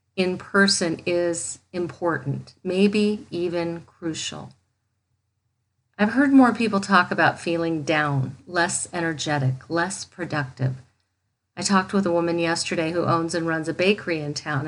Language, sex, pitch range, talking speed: English, female, 140-185 Hz, 135 wpm